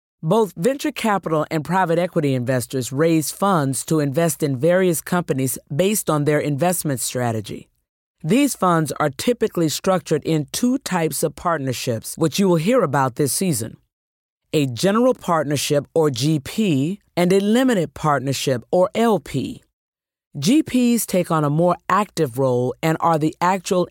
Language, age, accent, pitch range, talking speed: English, 40-59, American, 145-190 Hz, 145 wpm